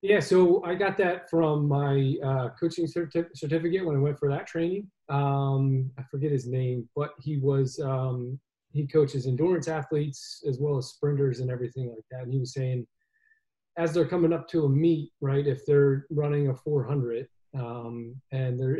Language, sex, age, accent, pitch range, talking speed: English, male, 30-49, American, 130-155 Hz, 180 wpm